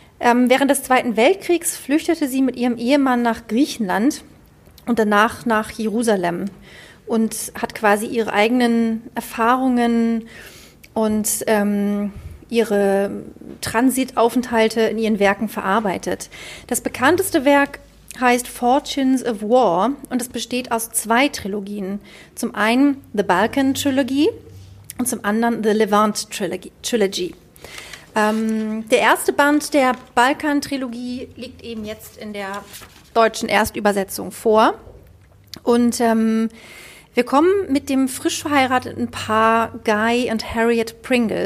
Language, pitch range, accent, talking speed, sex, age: German, 215-255 Hz, German, 115 wpm, female, 40-59